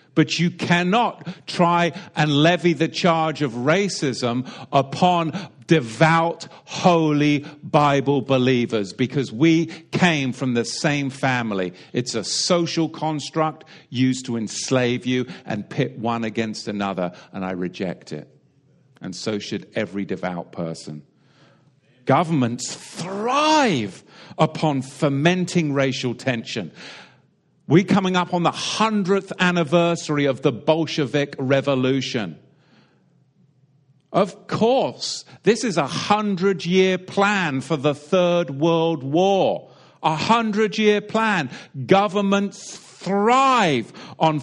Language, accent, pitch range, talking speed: English, British, 140-180 Hz, 110 wpm